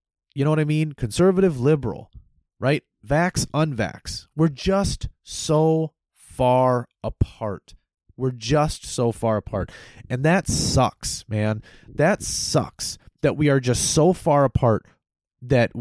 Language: English